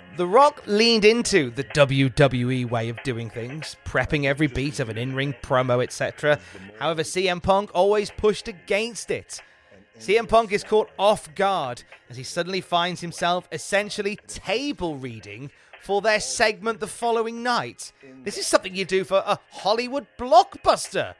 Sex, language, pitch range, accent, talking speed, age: male, English, 140-215 Hz, British, 155 wpm, 30-49